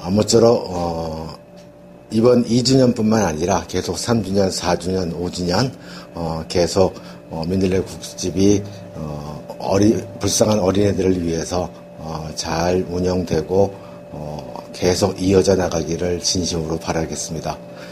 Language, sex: Korean, male